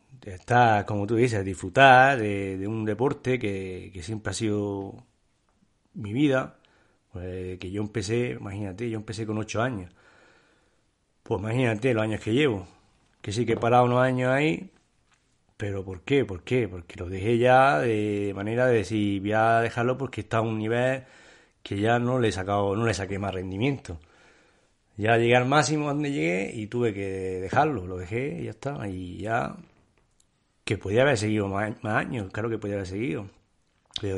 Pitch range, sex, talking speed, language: 100-120 Hz, male, 180 wpm, Spanish